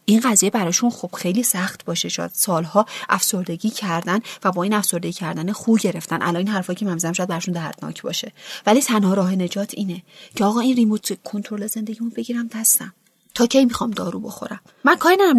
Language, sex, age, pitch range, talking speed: Persian, female, 30-49, 175-220 Hz, 185 wpm